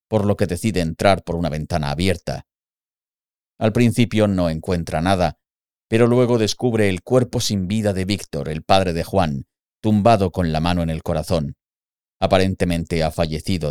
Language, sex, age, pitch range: Spanish, male, 50-69, 85-105 Hz